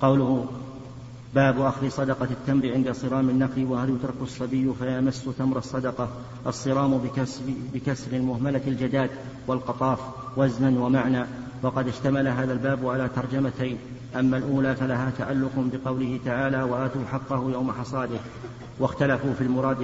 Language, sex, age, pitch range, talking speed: Arabic, male, 50-69, 130-135 Hz, 125 wpm